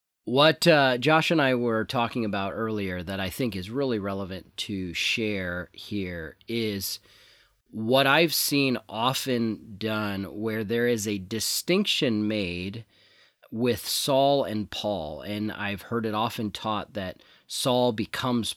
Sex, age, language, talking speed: male, 30-49, English, 140 wpm